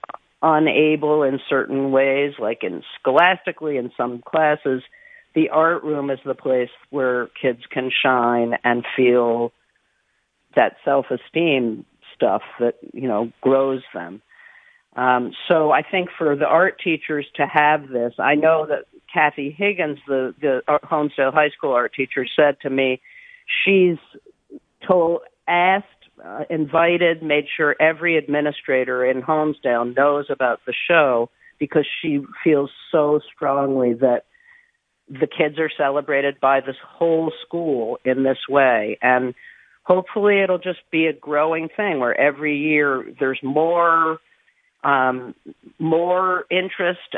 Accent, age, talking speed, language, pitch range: American, 50-69, 130 wpm, English, 135-170 Hz